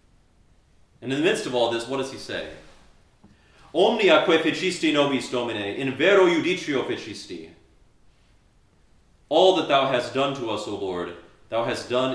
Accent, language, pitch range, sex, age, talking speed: American, English, 95-125 Hz, male, 30-49, 155 wpm